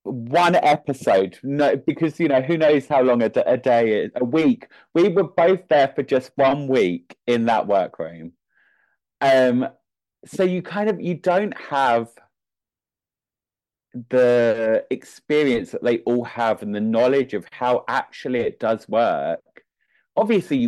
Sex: male